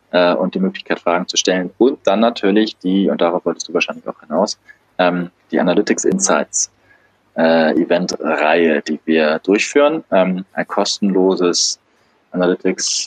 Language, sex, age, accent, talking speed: German, male, 20-39, German, 125 wpm